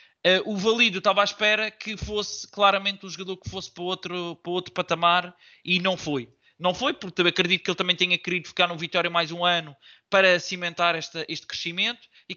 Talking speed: 205 wpm